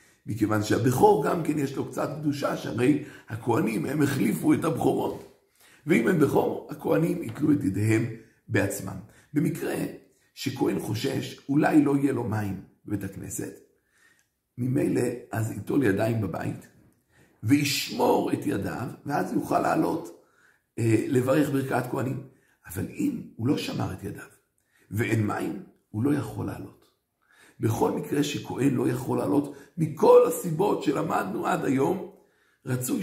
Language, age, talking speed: Hebrew, 50-69, 130 wpm